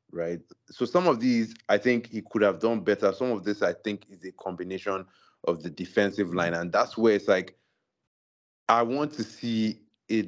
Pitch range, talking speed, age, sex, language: 95-120 Hz, 200 wpm, 30-49, male, English